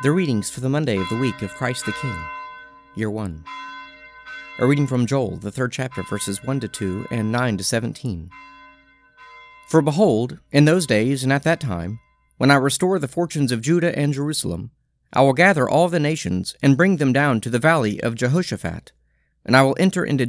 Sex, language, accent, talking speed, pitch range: male, English, American, 185 wpm, 105-155 Hz